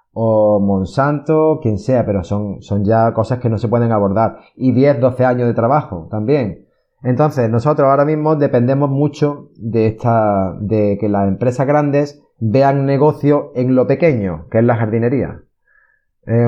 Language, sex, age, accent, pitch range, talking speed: Spanish, male, 30-49, Spanish, 110-140 Hz, 155 wpm